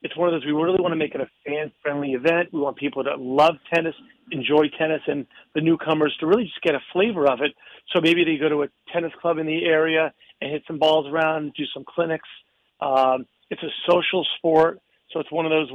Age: 40-59